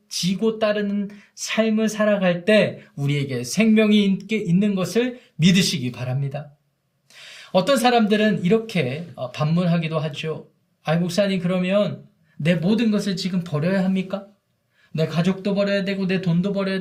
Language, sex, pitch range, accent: Korean, male, 155-210 Hz, native